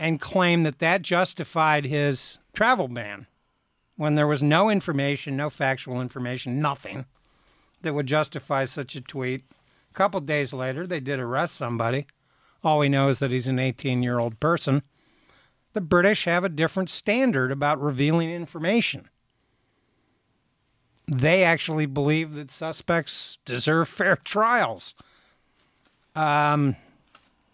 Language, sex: English, male